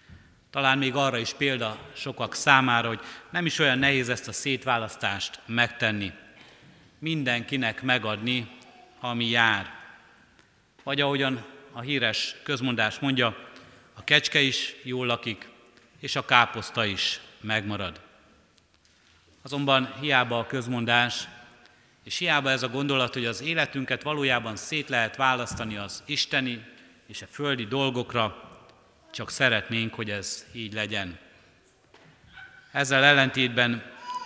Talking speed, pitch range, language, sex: 115 wpm, 110-135 Hz, Hungarian, male